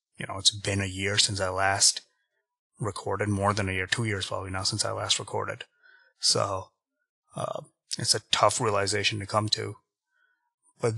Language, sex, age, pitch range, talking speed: English, male, 30-49, 100-120 Hz, 175 wpm